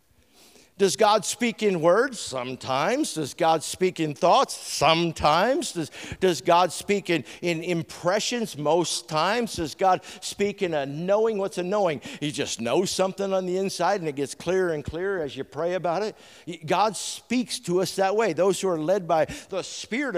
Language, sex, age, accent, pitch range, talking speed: English, male, 50-69, American, 155-205 Hz, 180 wpm